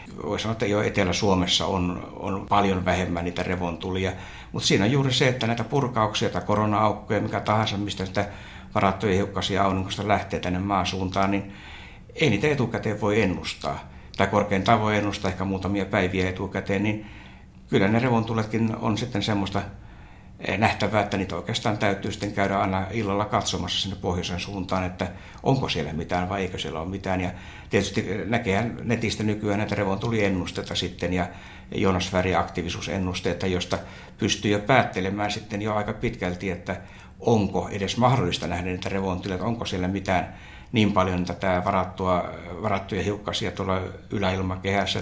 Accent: native